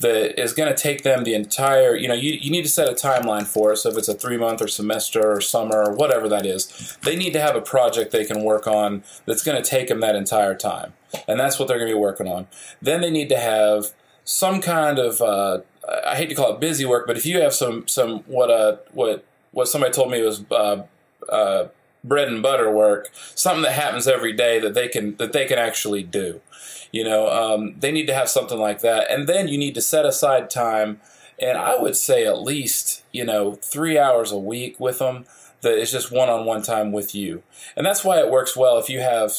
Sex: male